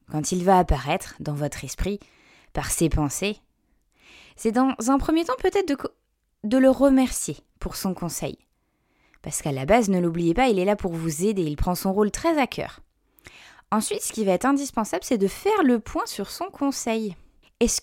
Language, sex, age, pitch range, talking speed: French, female, 20-39, 170-225 Hz, 195 wpm